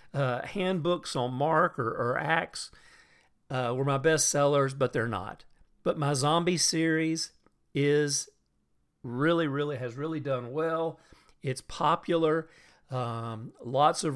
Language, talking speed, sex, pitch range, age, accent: English, 125 wpm, male, 125-155 Hz, 50-69, American